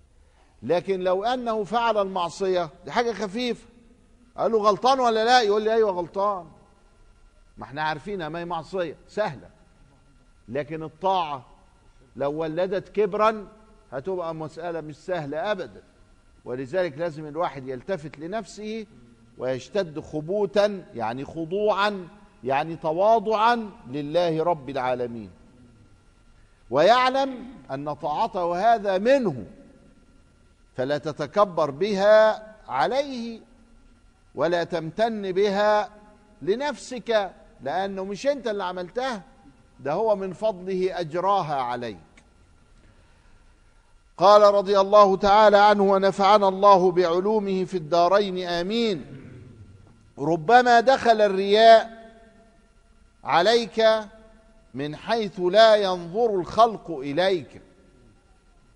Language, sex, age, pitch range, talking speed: Arabic, male, 50-69, 145-215 Hz, 95 wpm